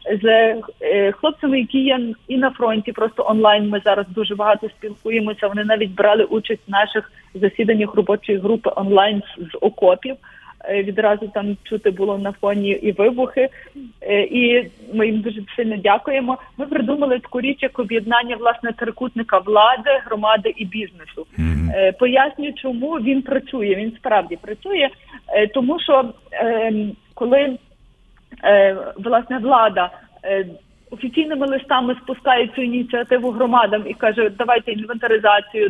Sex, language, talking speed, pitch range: female, Ukrainian, 135 wpm, 210-265 Hz